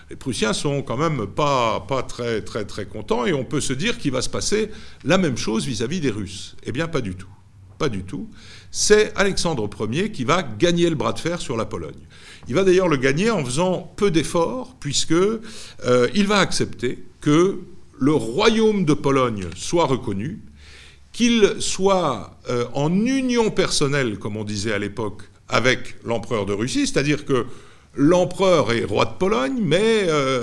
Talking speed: 175 wpm